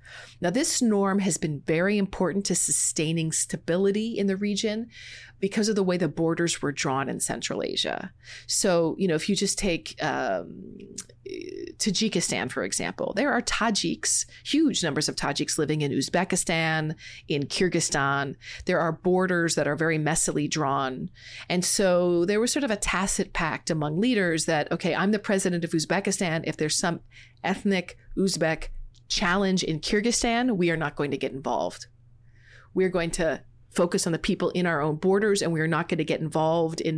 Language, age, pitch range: English, 30-49, 155-200 Hz